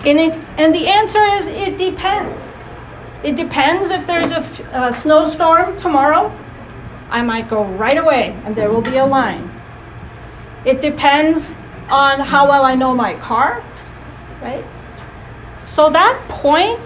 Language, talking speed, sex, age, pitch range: English, 140 wpm, female, 40-59, 225-310 Hz